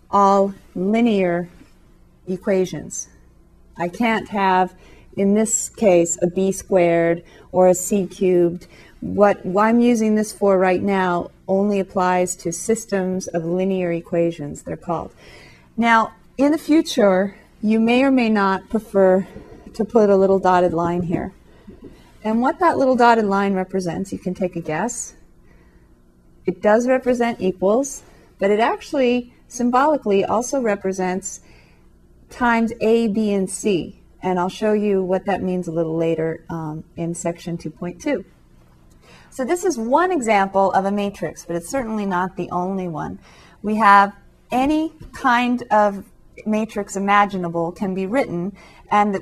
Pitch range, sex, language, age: 175-215 Hz, female, English, 40-59